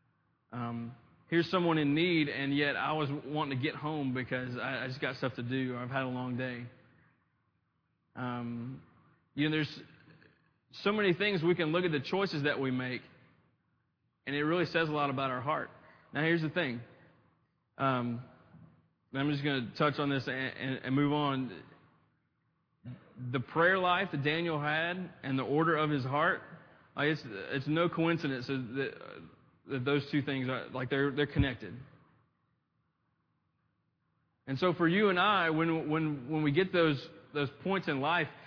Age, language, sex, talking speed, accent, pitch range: 30-49, English, male, 175 wpm, American, 130-165 Hz